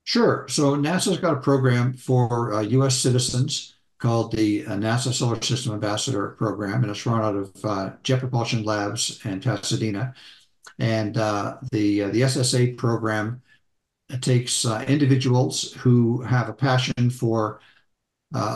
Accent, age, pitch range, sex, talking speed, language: American, 60-79, 105-130 Hz, male, 145 wpm, English